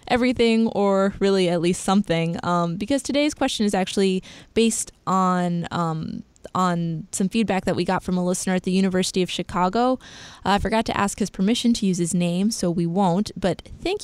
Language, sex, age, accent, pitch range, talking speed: English, female, 20-39, American, 180-220 Hz, 190 wpm